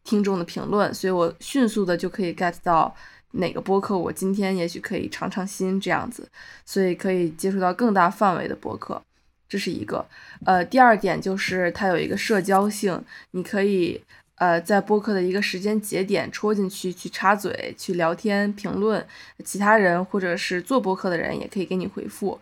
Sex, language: female, Chinese